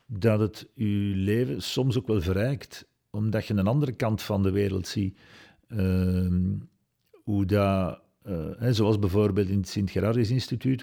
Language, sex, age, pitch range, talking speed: Dutch, male, 50-69, 100-115 Hz, 150 wpm